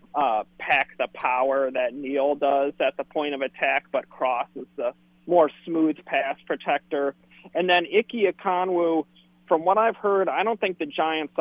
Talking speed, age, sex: 170 wpm, 40-59, male